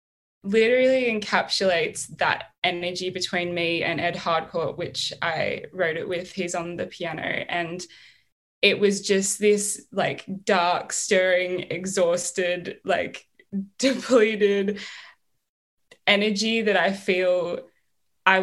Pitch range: 180-205 Hz